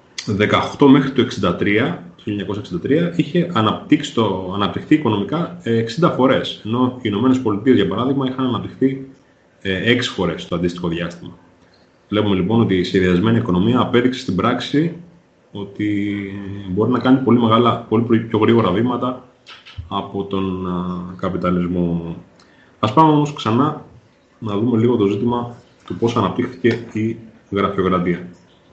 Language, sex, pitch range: Greek, male, 90-125 Hz